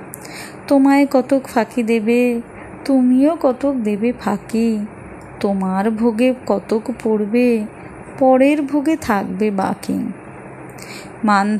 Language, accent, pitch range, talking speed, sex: Bengali, native, 215-285 Hz, 90 wpm, female